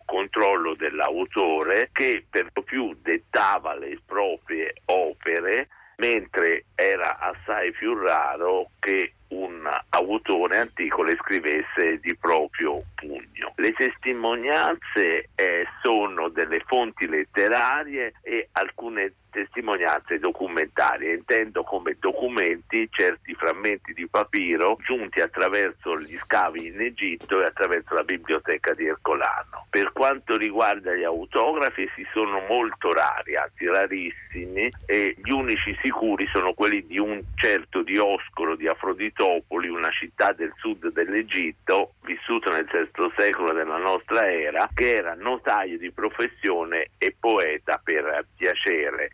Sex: male